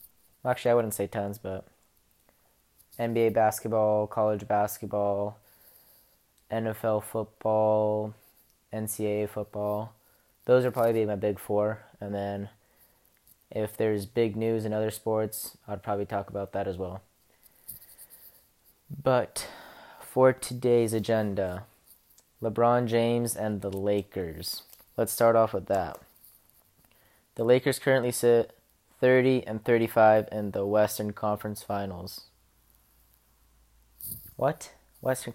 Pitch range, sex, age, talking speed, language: 105-115 Hz, male, 20-39, 110 wpm, English